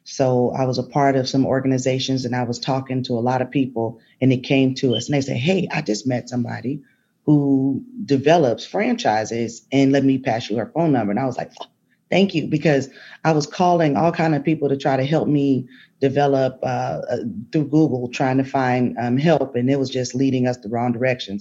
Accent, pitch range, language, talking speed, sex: American, 130-145 Hz, English, 220 wpm, female